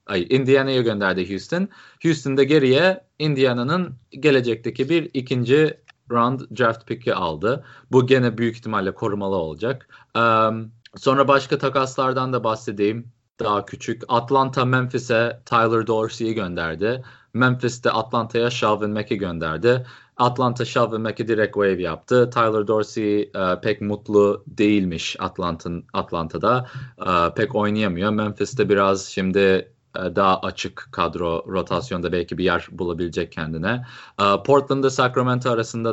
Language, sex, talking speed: Turkish, male, 115 wpm